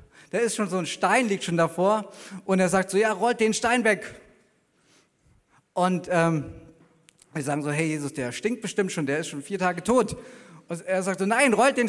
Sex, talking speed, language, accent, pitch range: male, 210 wpm, German, German, 190-235 Hz